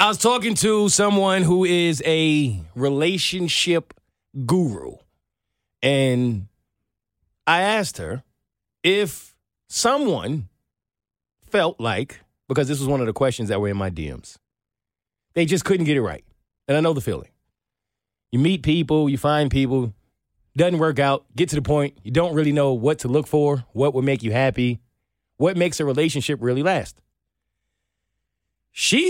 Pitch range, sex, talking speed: 110-160 Hz, male, 155 wpm